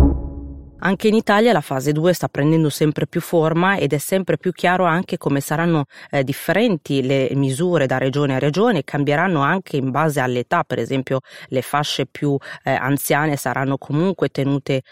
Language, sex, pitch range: Italian, female, 135-165 Hz